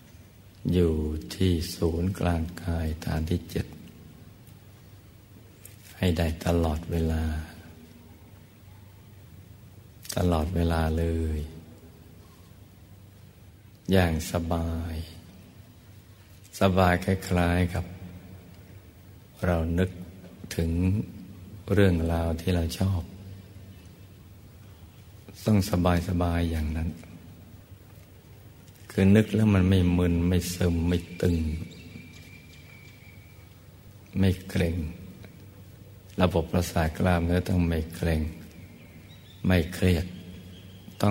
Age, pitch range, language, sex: 60-79, 85-100 Hz, Thai, male